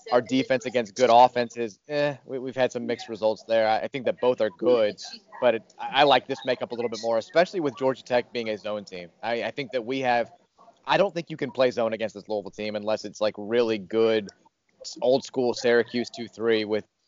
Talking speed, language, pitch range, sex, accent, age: 225 wpm, English, 110-135 Hz, male, American, 30-49